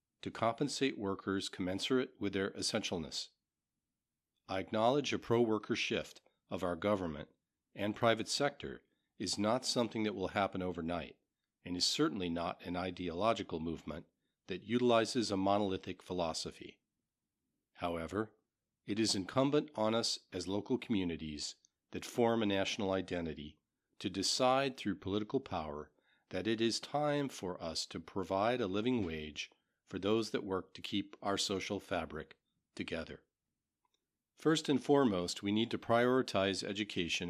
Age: 50-69